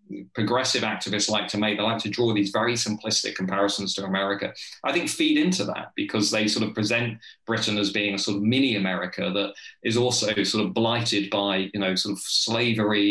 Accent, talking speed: British, 200 wpm